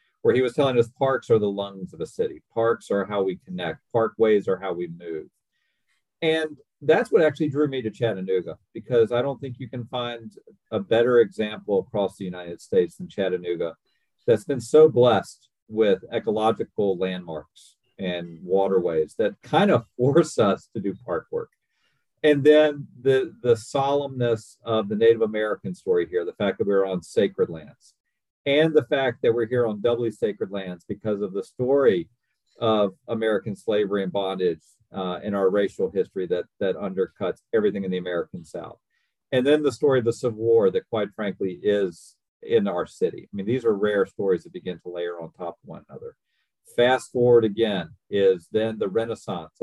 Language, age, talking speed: English, 40-59, 185 wpm